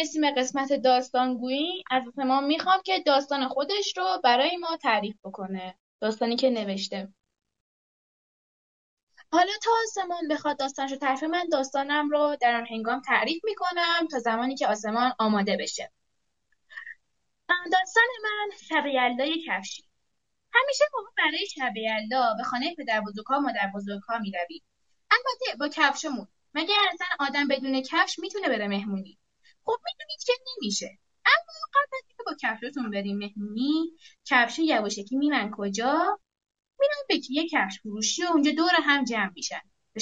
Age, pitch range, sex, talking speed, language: 10-29, 235-355 Hz, female, 135 wpm, Persian